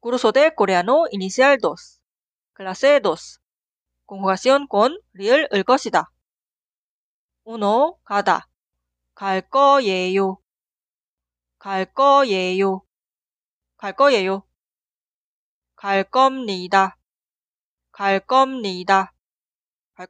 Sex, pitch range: female, 190-270 Hz